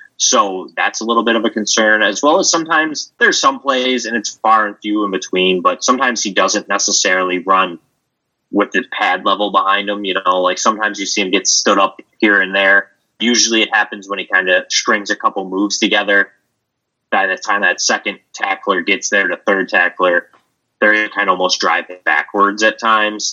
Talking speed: 200 wpm